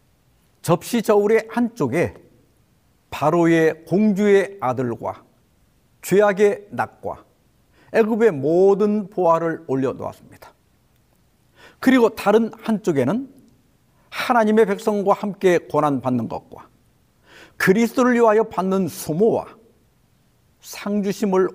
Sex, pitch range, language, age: male, 140-220 Hz, Korean, 50-69